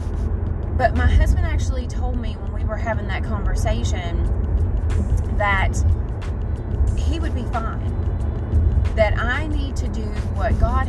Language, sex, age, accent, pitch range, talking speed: English, female, 30-49, American, 80-95 Hz, 130 wpm